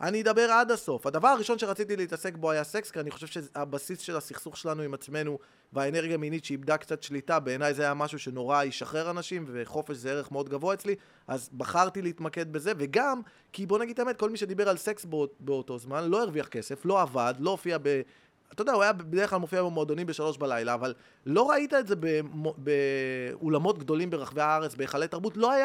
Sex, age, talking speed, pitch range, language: male, 20-39, 195 wpm, 145-220 Hz, Hebrew